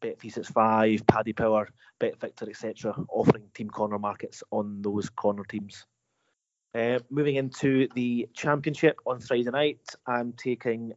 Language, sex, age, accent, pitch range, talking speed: English, male, 30-49, British, 115-130 Hz, 135 wpm